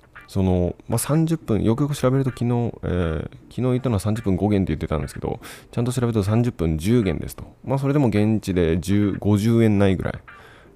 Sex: male